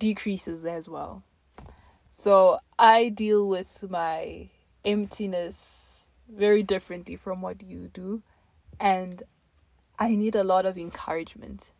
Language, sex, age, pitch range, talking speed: English, female, 20-39, 185-230 Hz, 110 wpm